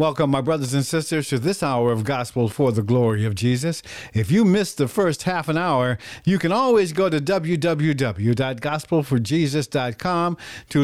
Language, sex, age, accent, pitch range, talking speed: English, male, 50-69, American, 125-180 Hz, 165 wpm